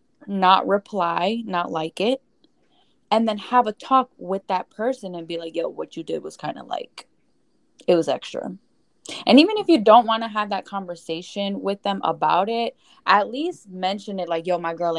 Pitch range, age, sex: 185-255 Hz, 10-29, female